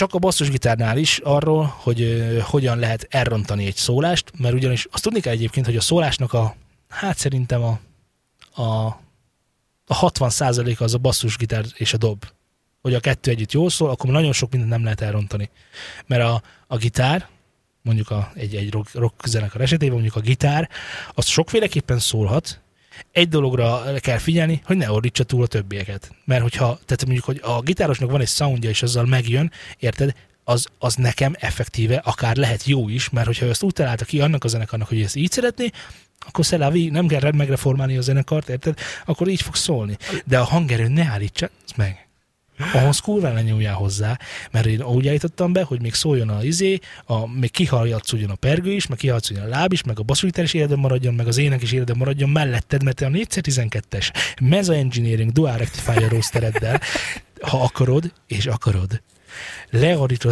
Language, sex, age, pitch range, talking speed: Hungarian, male, 20-39, 115-145 Hz, 175 wpm